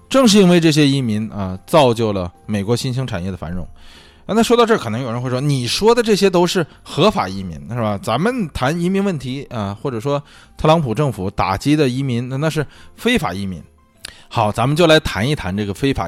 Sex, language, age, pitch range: male, Chinese, 20-39, 105-165 Hz